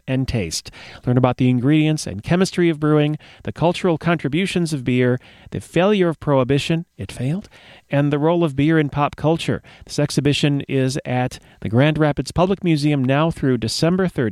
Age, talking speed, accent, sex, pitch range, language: 40-59, 170 wpm, American, male, 125-155 Hz, English